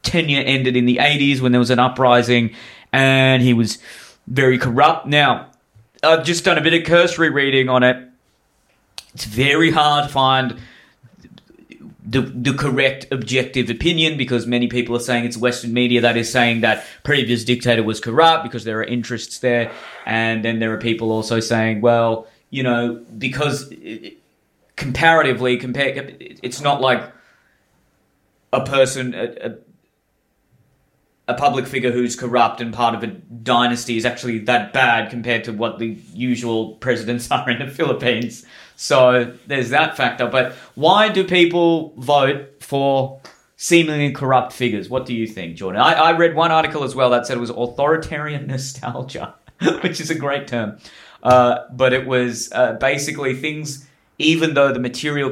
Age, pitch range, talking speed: 20-39, 120-140 Hz, 160 wpm